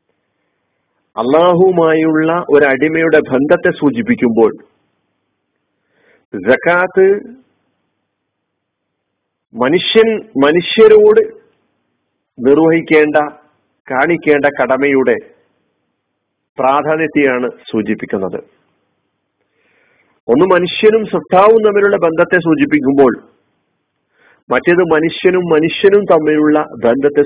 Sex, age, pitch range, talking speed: male, 50-69, 150-200 Hz, 55 wpm